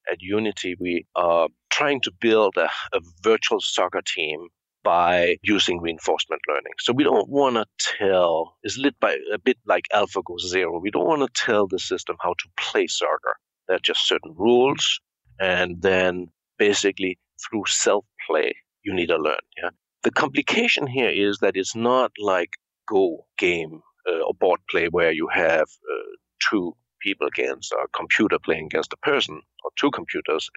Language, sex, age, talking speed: English, male, 50-69, 165 wpm